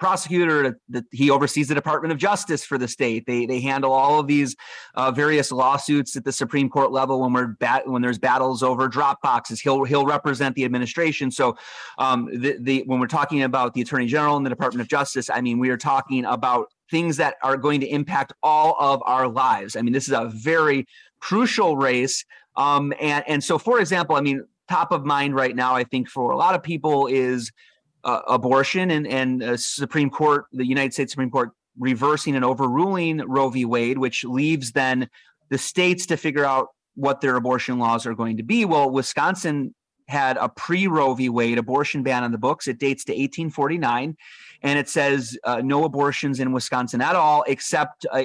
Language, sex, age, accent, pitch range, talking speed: English, male, 30-49, American, 125-150 Hz, 195 wpm